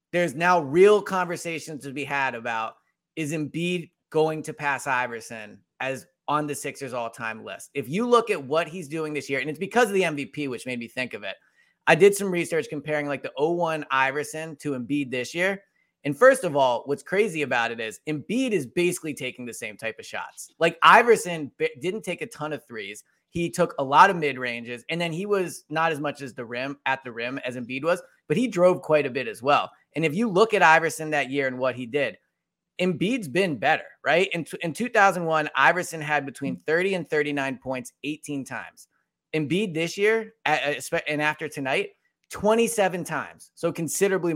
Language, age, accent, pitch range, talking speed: English, 20-39, American, 140-180 Hz, 205 wpm